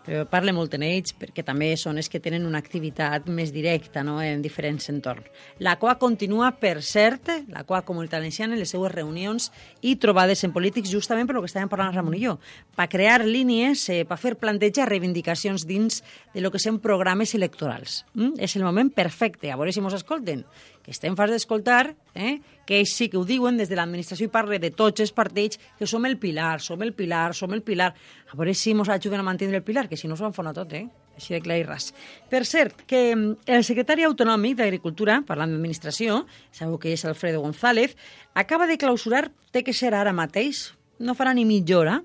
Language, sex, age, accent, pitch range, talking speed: Spanish, female, 30-49, Spanish, 170-235 Hz, 210 wpm